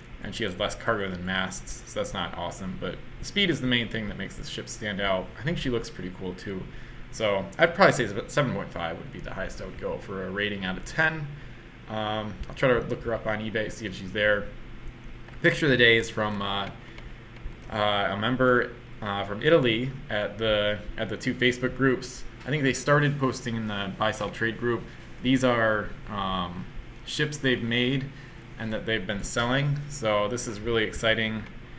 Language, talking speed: English, 210 wpm